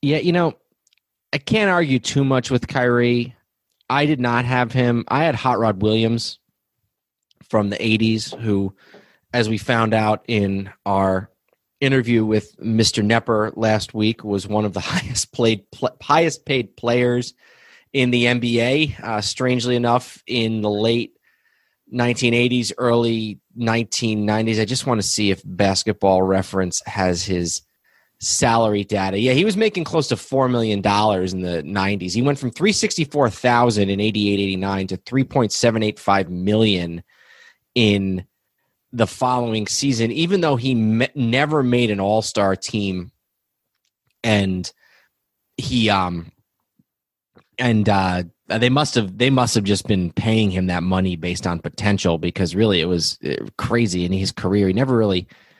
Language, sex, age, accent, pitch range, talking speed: English, male, 30-49, American, 100-125 Hz, 145 wpm